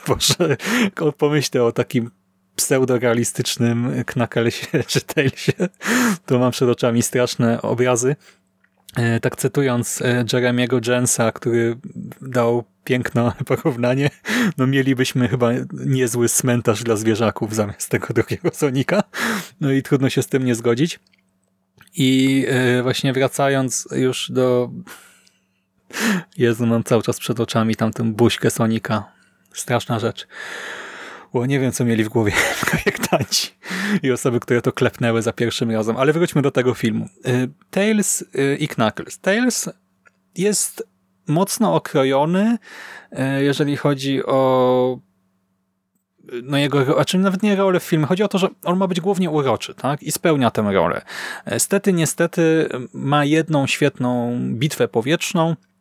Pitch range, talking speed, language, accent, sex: 115-150 Hz, 125 wpm, Polish, native, male